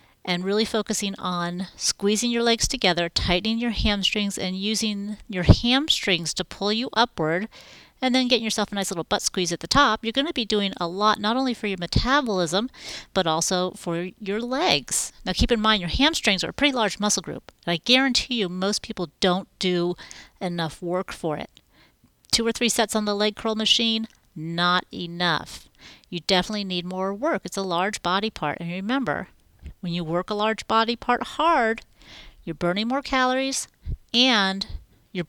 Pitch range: 180-230 Hz